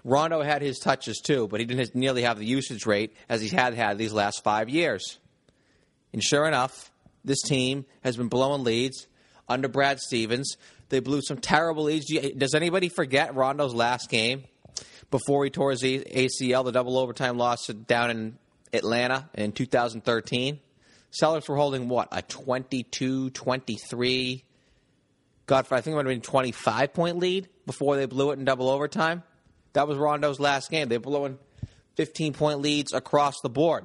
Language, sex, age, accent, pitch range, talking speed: English, male, 30-49, American, 120-145 Hz, 165 wpm